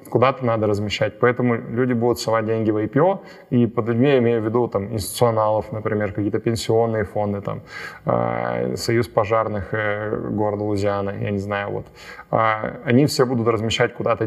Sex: male